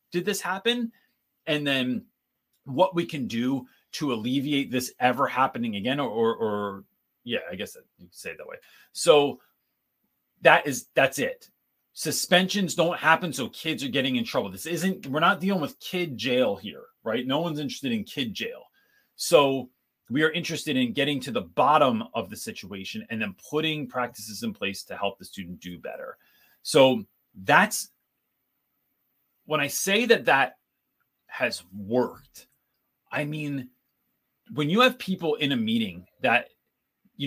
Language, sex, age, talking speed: English, male, 30-49, 165 wpm